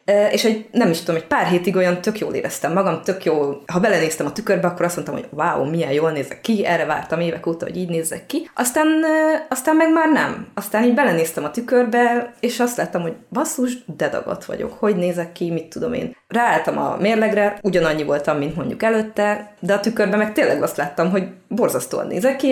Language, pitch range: Hungarian, 165-215 Hz